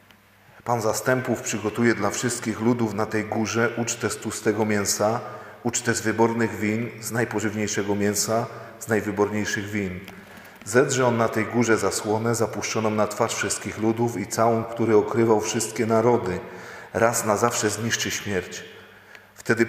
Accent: native